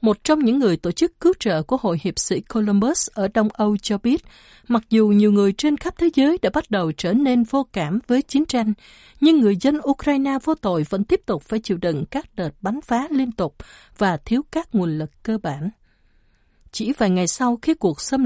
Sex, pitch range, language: female, 195-275 Hz, Vietnamese